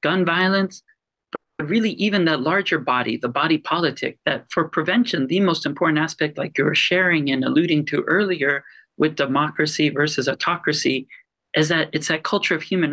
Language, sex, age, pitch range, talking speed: English, male, 40-59, 150-180 Hz, 170 wpm